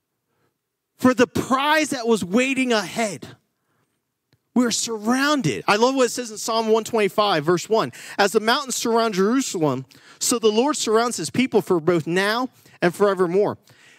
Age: 40-59